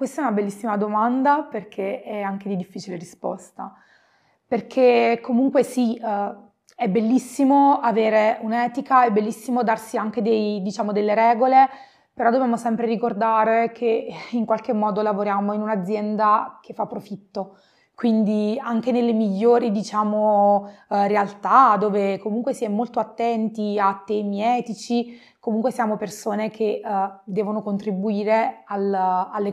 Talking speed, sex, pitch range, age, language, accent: 125 wpm, female, 200-230 Hz, 20-39, Italian, native